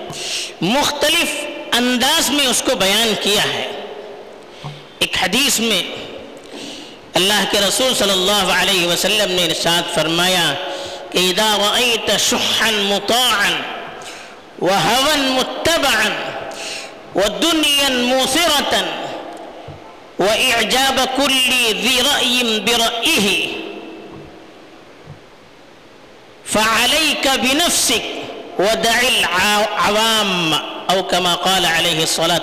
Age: 50-69